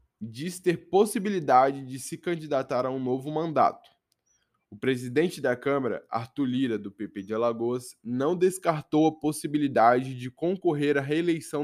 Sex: male